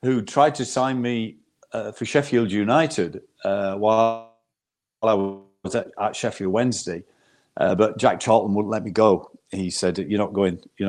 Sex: male